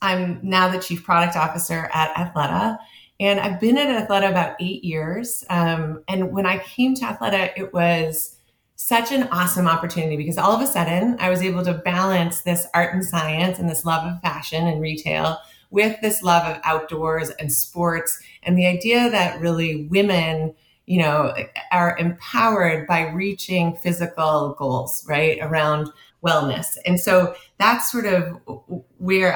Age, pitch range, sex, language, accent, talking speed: 30-49, 160-190 Hz, female, English, American, 165 wpm